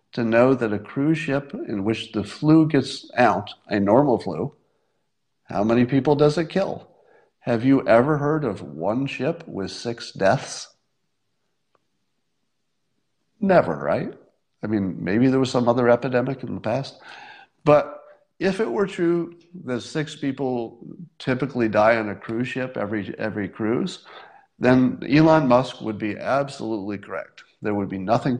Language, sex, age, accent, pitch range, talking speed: English, male, 50-69, American, 110-145 Hz, 150 wpm